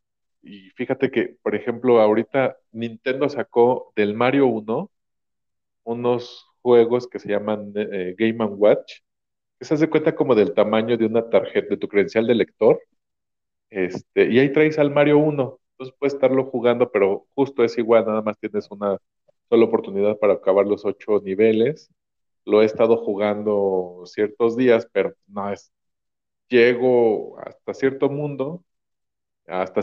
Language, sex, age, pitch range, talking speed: Spanish, male, 40-59, 100-125 Hz, 150 wpm